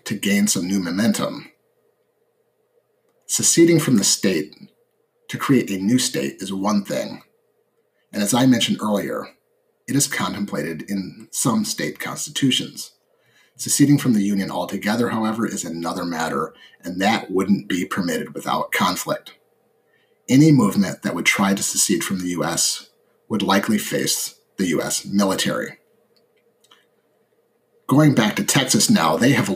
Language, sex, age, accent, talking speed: English, male, 30-49, American, 140 wpm